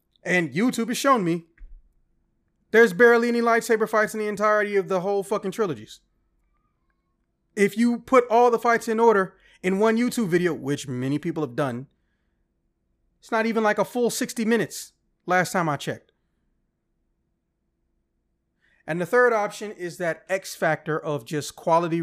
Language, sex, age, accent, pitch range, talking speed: English, male, 30-49, American, 150-195 Hz, 160 wpm